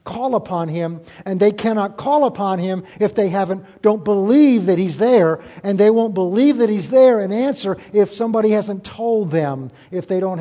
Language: English